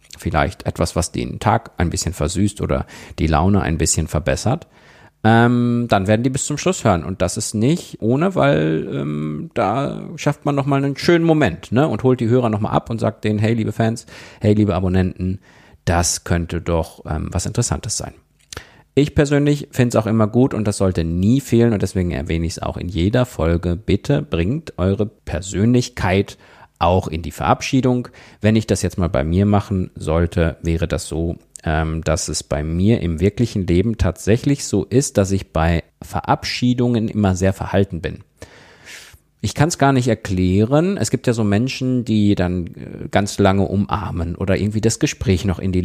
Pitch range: 85-120 Hz